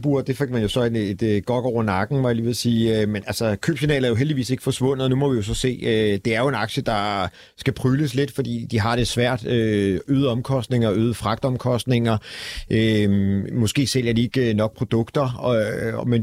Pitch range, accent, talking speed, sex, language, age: 110-130 Hz, native, 195 wpm, male, Danish, 40-59